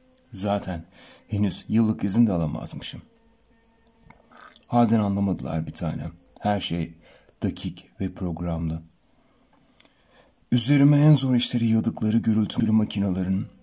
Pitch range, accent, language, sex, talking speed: 85-110 Hz, native, Turkish, male, 95 wpm